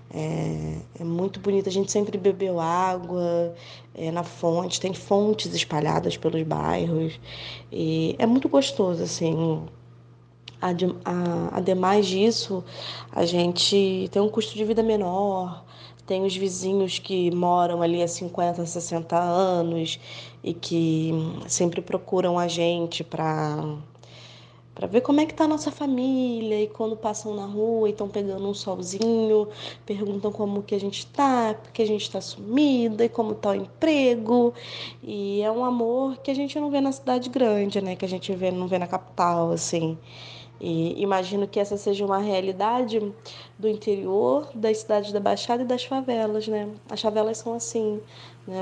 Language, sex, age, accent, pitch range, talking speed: Portuguese, female, 20-39, Brazilian, 170-215 Hz, 155 wpm